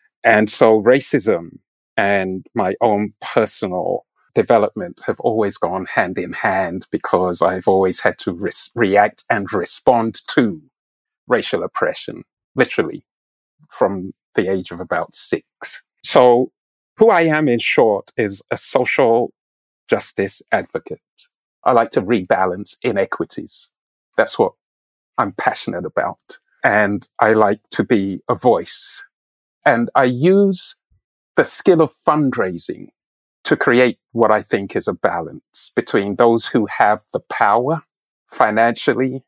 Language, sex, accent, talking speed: English, male, British, 125 wpm